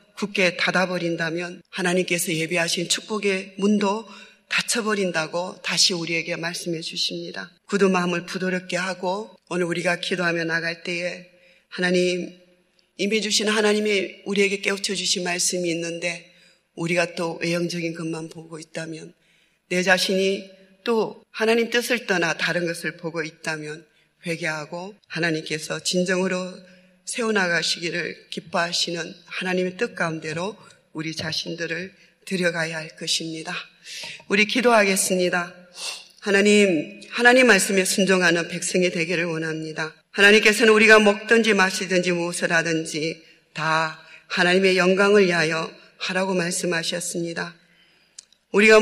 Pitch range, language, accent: 170-195 Hz, Korean, native